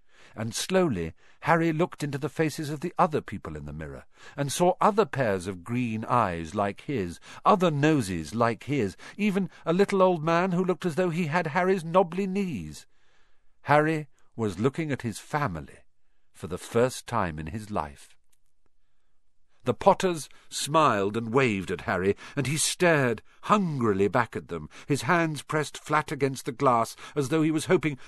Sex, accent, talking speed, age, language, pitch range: male, British, 170 wpm, 50-69, English, 105-165 Hz